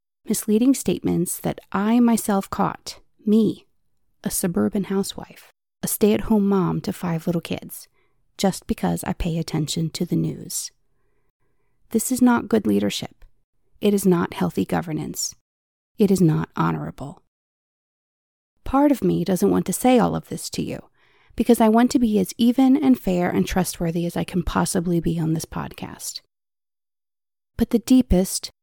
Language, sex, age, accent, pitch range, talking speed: English, female, 30-49, American, 170-215 Hz, 155 wpm